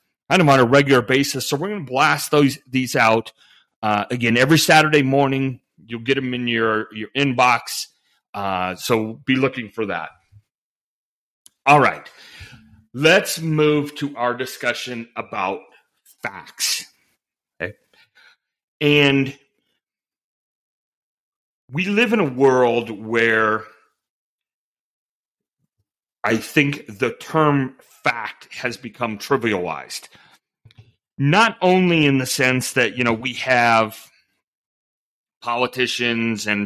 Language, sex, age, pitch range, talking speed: English, male, 40-59, 110-135 Hz, 115 wpm